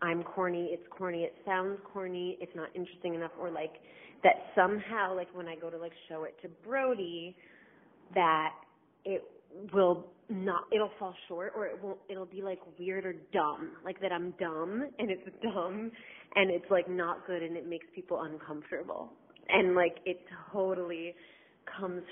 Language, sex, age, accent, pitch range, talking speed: English, female, 30-49, American, 175-200 Hz, 170 wpm